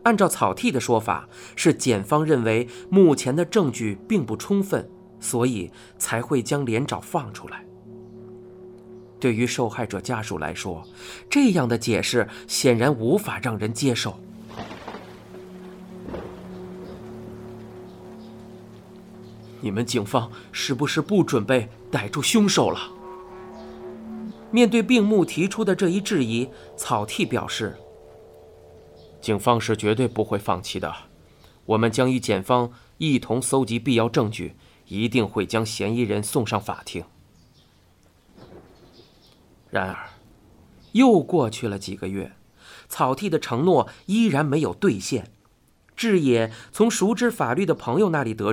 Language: Chinese